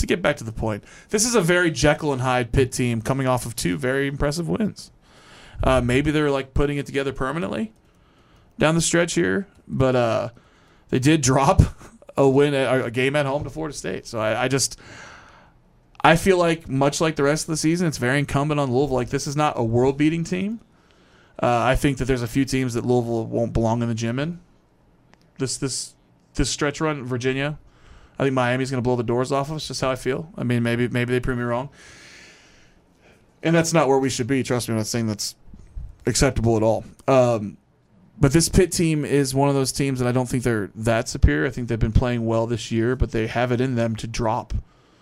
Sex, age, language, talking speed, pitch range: male, 20-39, English, 225 wpm, 115-140 Hz